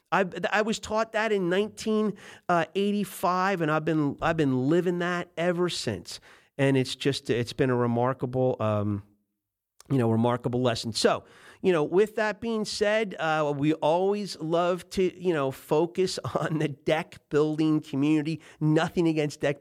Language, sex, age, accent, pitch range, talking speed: English, male, 40-59, American, 130-185 Hz, 160 wpm